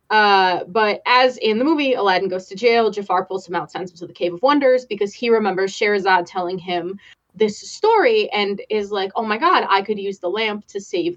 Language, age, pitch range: English, 20-39, 195-255 Hz